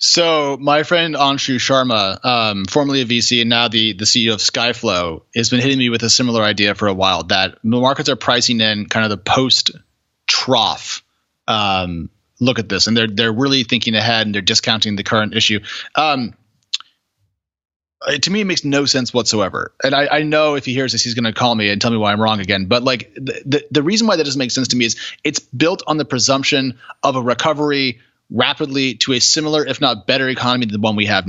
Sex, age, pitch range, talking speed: male, 30-49, 110-140 Hz, 220 wpm